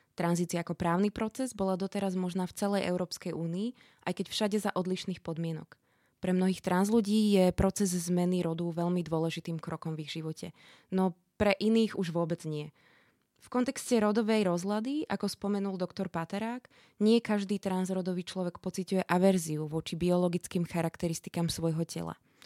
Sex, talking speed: female, 150 wpm